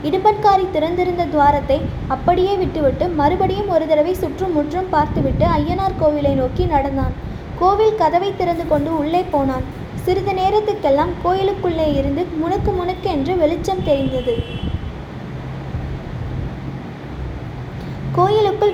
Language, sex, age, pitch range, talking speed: Tamil, female, 20-39, 300-370 Hz, 95 wpm